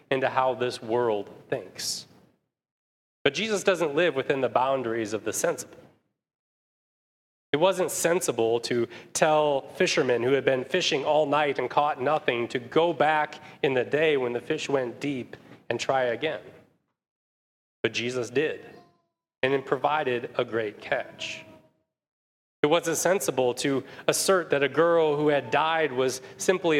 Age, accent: 30-49, American